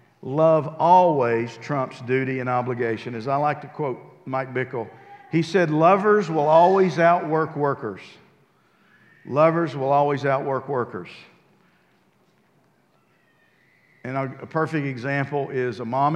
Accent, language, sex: American, English, male